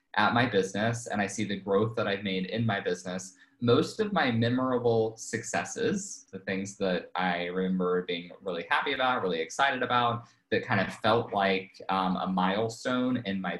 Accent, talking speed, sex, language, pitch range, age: American, 180 wpm, male, English, 95-125 Hz, 20-39